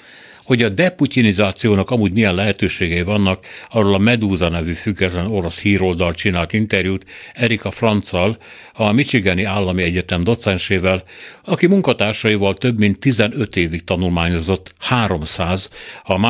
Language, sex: Hungarian, male